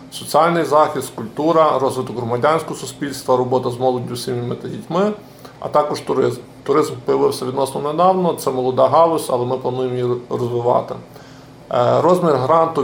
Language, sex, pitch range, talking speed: Ukrainian, male, 130-165 Hz, 135 wpm